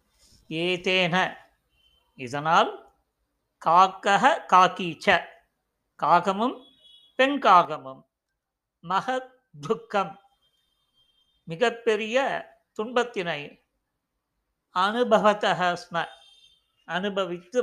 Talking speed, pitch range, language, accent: 35 wpm, 180-250 Hz, Tamil, native